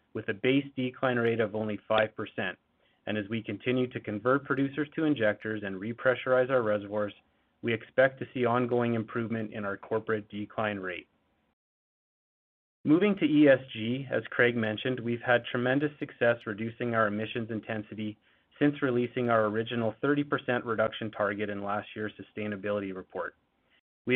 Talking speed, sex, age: 145 wpm, male, 30-49